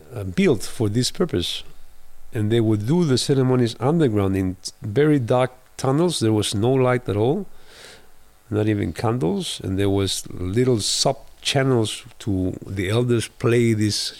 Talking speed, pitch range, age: 150 wpm, 95-125 Hz, 50-69